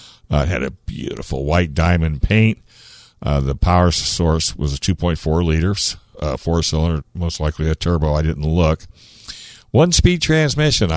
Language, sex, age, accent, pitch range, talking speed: English, male, 60-79, American, 75-95 Hz, 160 wpm